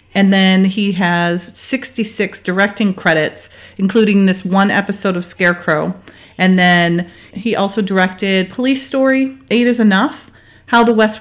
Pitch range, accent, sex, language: 175-215 Hz, American, female, English